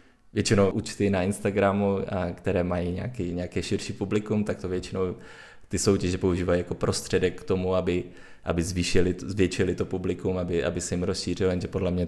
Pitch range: 90-100 Hz